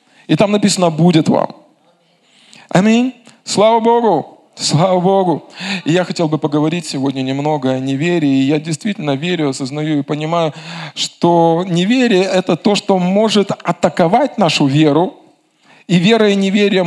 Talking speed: 135 wpm